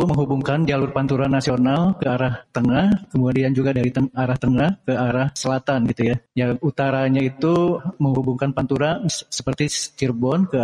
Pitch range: 140-220 Hz